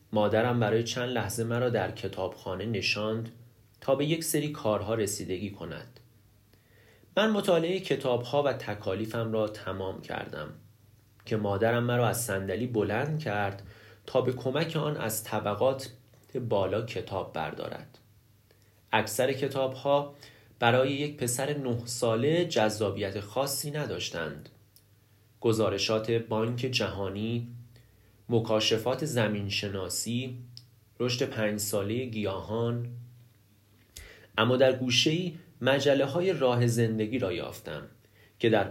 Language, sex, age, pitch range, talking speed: Persian, male, 30-49, 105-125 Hz, 105 wpm